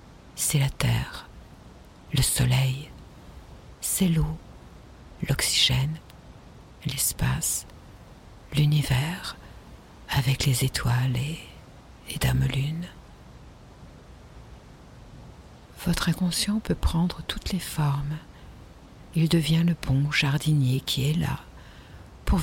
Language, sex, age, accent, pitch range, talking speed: French, female, 60-79, French, 125-155 Hz, 90 wpm